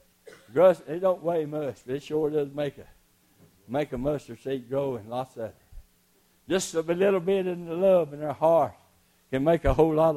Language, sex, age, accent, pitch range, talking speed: English, male, 60-79, American, 155-210 Hz, 205 wpm